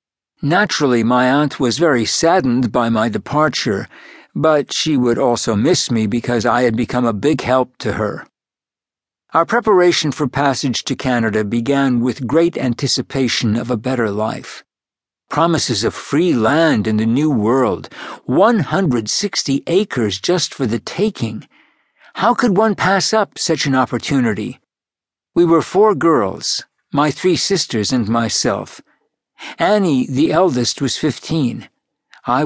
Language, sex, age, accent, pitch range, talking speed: English, male, 60-79, American, 120-165 Hz, 140 wpm